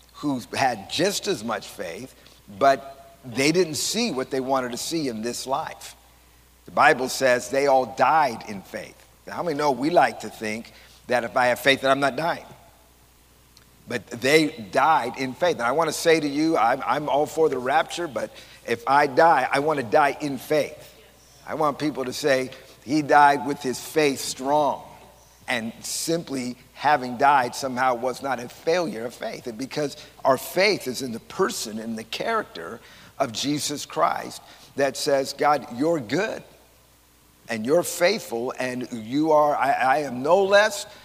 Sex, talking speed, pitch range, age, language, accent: male, 180 wpm, 115-150 Hz, 50-69, English, American